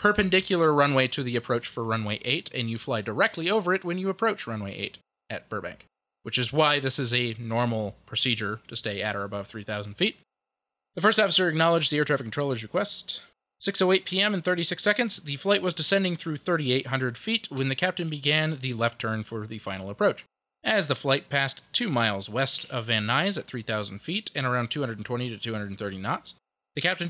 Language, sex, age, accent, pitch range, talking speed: English, male, 20-39, American, 120-185 Hz, 195 wpm